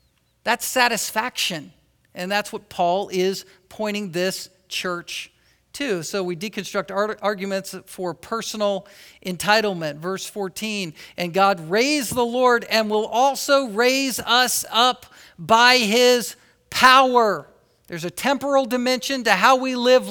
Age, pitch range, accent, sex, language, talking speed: 50-69, 180-245 Hz, American, male, English, 125 wpm